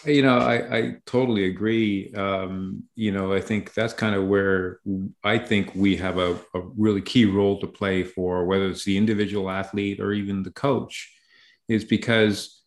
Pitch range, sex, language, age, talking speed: 100-115 Hz, male, English, 40-59, 180 wpm